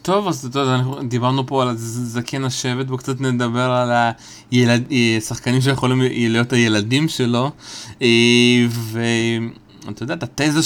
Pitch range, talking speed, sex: 115-140 Hz, 130 wpm, male